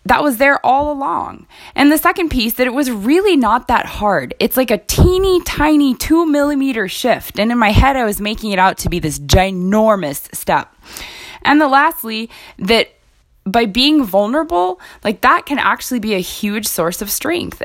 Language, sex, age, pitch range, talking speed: English, female, 20-39, 175-245 Hz, 185 wpm